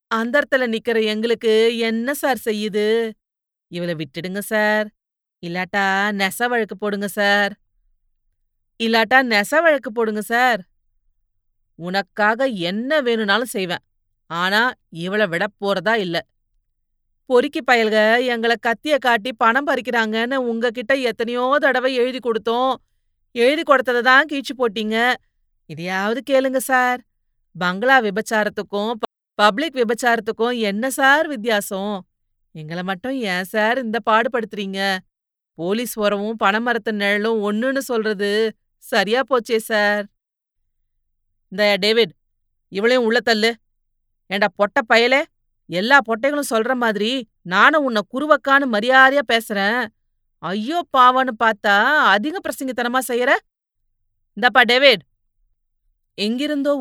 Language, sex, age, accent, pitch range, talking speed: Tamil, female, 30-49, native, 195-250 Hz, 100 wpm